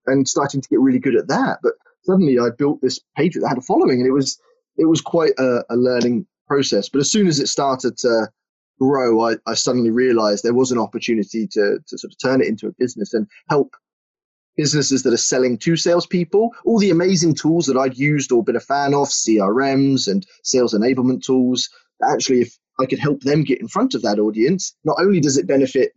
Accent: British